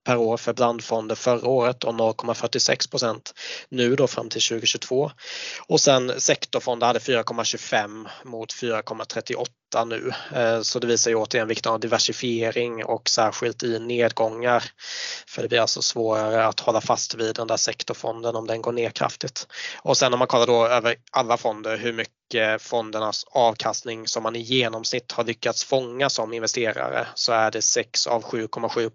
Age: 20-39